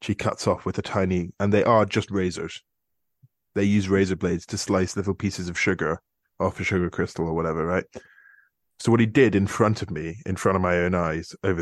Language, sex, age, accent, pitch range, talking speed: English, male, 20-39, British, 95-110 Hz, 220 wpm